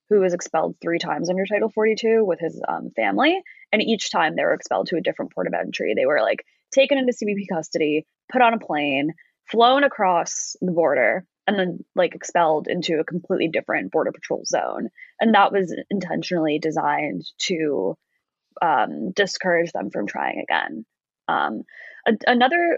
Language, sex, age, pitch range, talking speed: English, female, 10-29, 165-225 Hz, 170 wpm